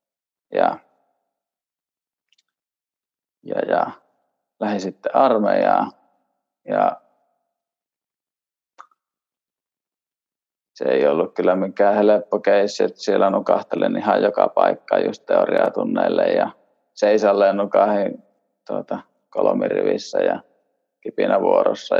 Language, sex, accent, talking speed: Finnish, male, native, 80 wpm